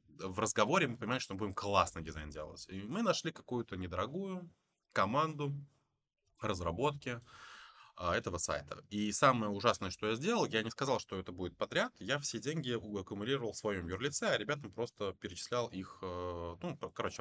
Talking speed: 160 wpm